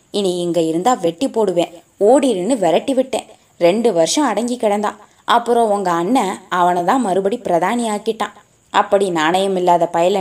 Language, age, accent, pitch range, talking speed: Tamil, 20-39, native, 175-245 Hz, 130 wpm